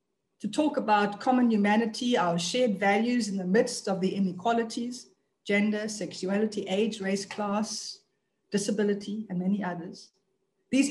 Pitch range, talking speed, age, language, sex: 185-235 Hz, 130 wpm, 50-69, English, female